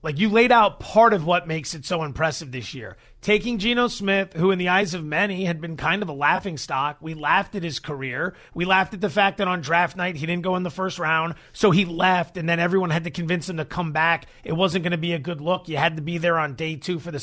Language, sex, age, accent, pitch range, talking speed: English, male, 30-49, American, 175-240 Hz, 280 wpm